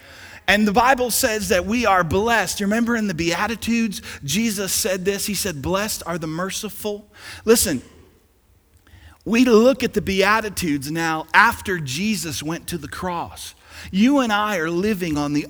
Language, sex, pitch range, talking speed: English, male, 135-200 Hz, 160 wpm